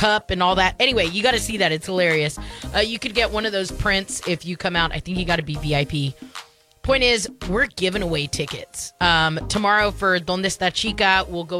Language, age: English, 20-39